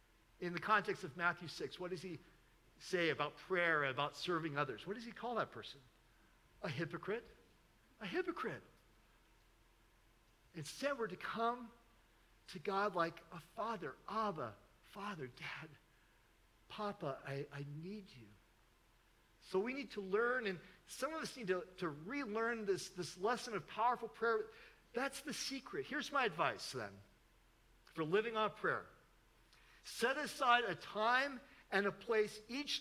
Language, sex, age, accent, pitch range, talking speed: English, male, 50-69, American, 165-245 Hz, 145 wpm